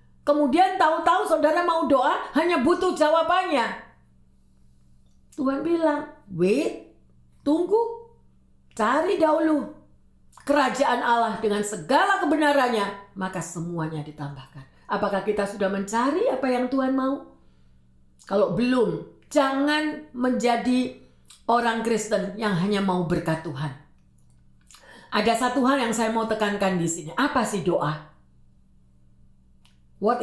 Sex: female